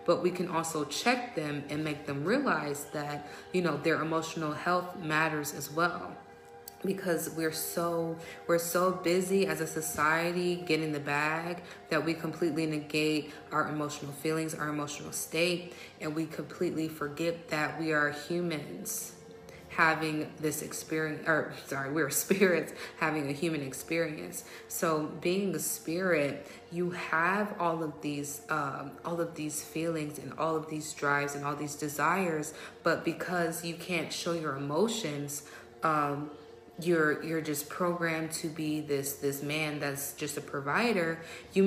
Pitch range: 150-175 Hz